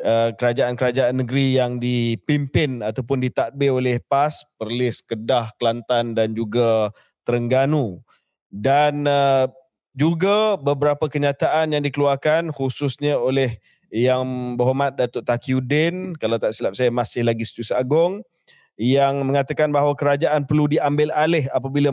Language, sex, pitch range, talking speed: Malay, male, 130-155 Hz, 120 wpm